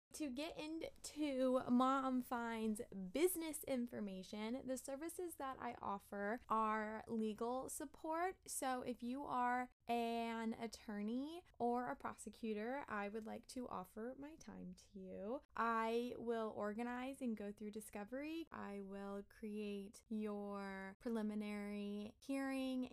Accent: American